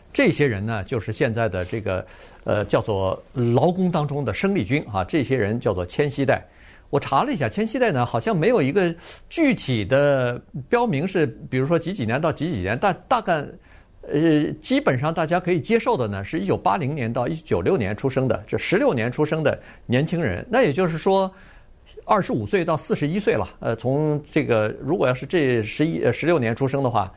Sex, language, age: male, Chinese, 50-69